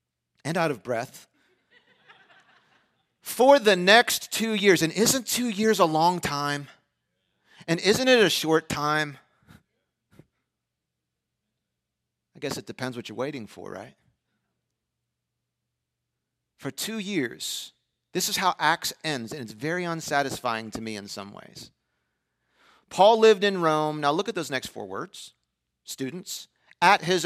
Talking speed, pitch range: 135 wpm, 120-195 Hz